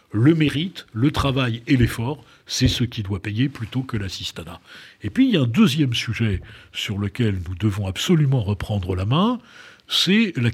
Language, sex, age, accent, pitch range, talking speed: French, male, 60-79, French, 105-135 Hz, 180 wpm